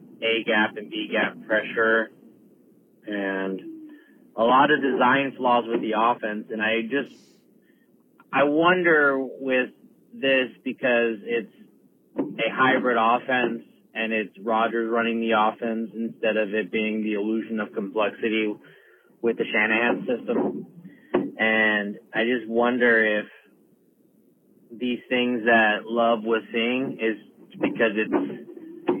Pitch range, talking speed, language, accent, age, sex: 110-125 Hz, 120 wpm, English, American, 30-49, male